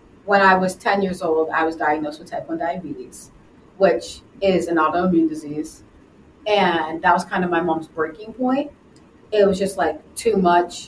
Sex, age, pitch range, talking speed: female, 30-49, 155-190 Hz, 180 wpm